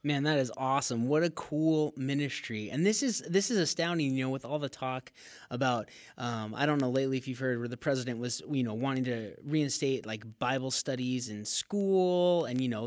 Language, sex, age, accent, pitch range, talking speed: English, male, 20-39, American, 125-165 Hz, 215 wpm